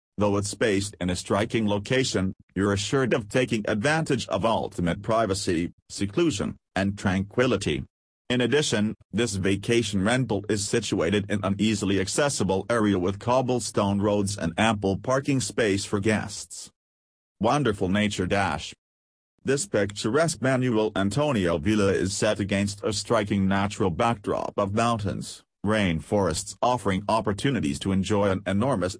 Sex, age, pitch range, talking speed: male, 40-59, 95-115 Hz, 130 wpm